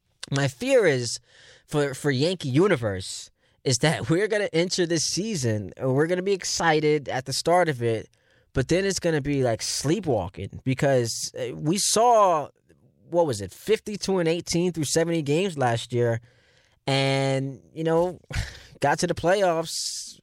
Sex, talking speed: male, 165 wpm